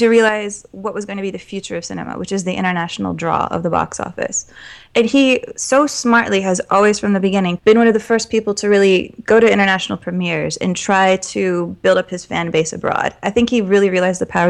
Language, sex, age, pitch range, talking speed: English, female, 20-39, 180-220 Hz, 235 wpm